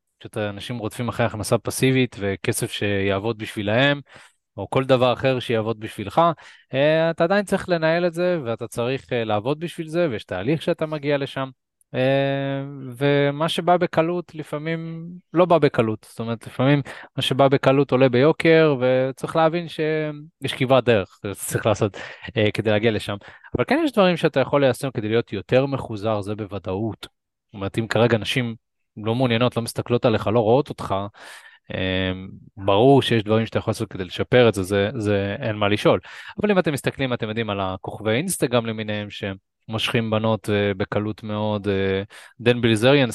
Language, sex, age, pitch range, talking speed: Hebrew, male, 20-39, 105-140 Hz, 140 wpm